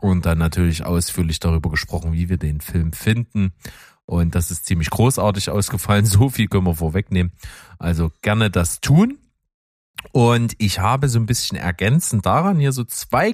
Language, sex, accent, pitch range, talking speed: German, male, German, 95-120 Hz, 165 wpm